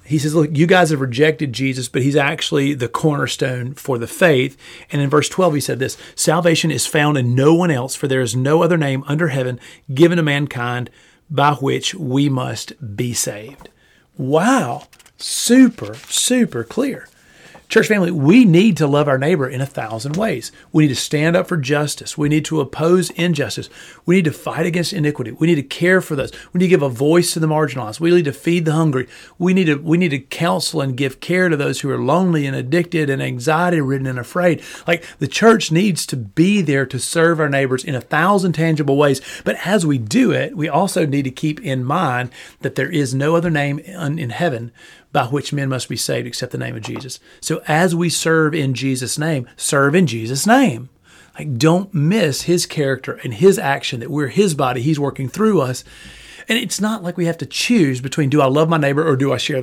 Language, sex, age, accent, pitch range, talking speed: English, male, 40-59, American, 135-170 Hz, 215 wpm